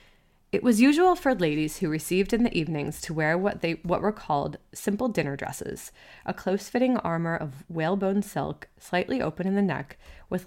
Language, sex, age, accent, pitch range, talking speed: English, female, 20-39, American, 160-210 Hz, 185 wpm